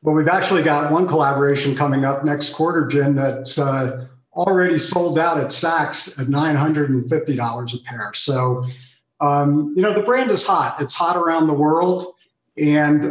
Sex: male